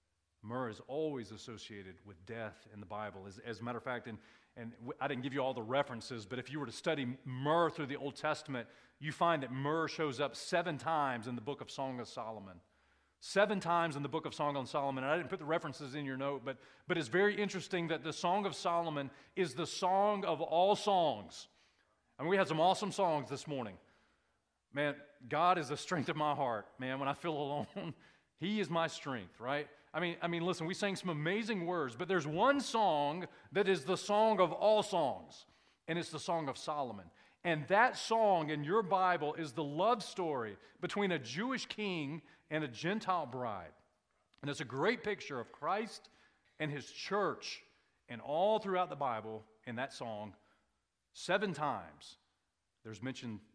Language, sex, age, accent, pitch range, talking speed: English, male, 40-59, American, 125-175 Hz, 200 wpm